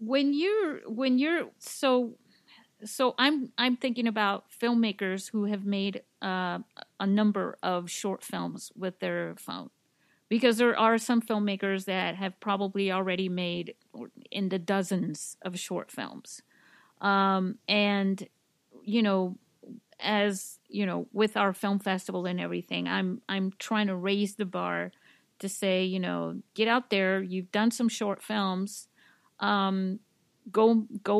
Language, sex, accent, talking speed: English, female, American, 140 wpm